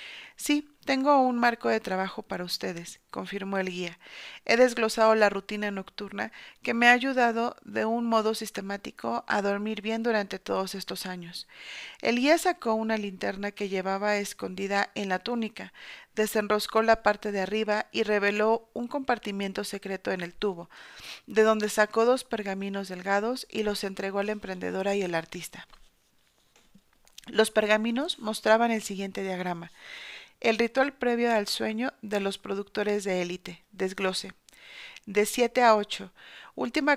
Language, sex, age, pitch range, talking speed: Spanish, female, 40-59, 195-225 Hz, 150 wpm